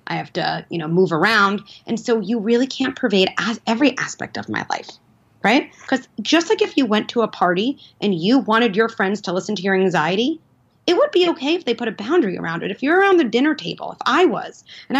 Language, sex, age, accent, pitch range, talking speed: English, female, 30-49, American, 195-265 Hz, 240 wpm